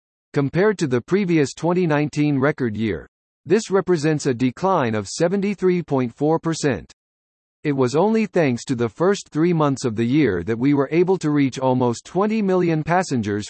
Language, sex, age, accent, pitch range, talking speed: English, male, 50-69, American, 120-175 Hz, 155 wpm